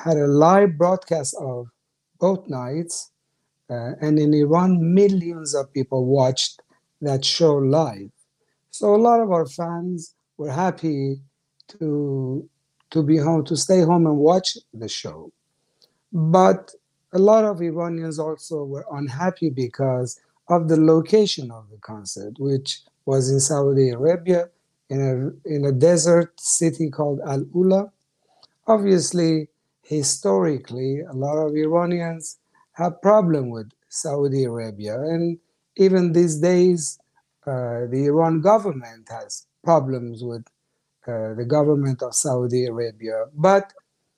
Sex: male